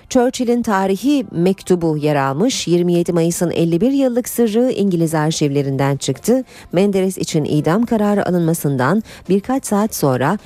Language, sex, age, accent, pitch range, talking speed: Turkish, female, 40-59, native, 155-215 Hz, 120 wpm